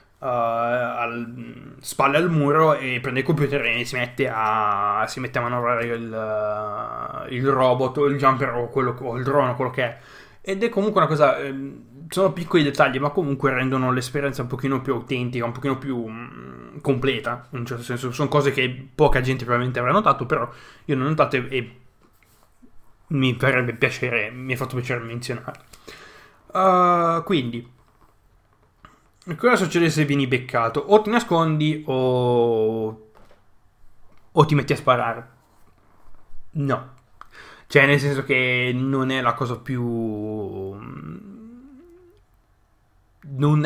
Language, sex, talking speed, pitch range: Italian, male, 140 wpm, 120-145 Hz